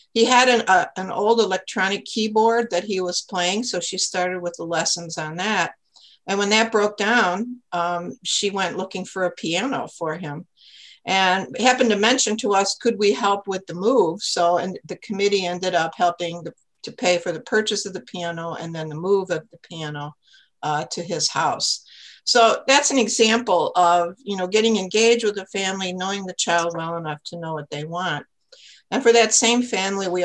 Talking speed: 200 wpm